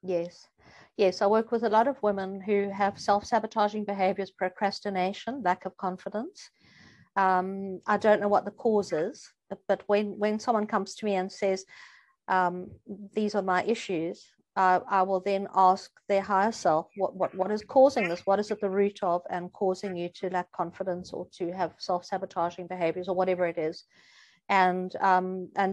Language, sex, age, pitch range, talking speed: English, female, 50-69, 190-235 Hz, 180 wpm